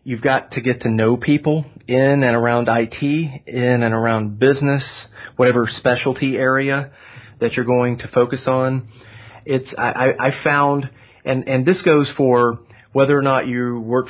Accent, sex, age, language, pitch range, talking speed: American, male, 30-49, English, 115-140 Hz, 160 wpm